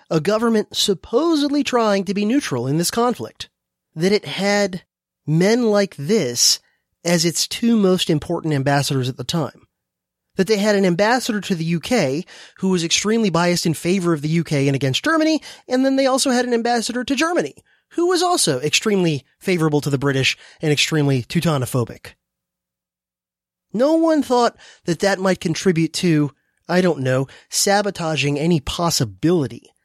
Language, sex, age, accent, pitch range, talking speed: English, male, 30-49, American, 130-200 Hz, 160 wpm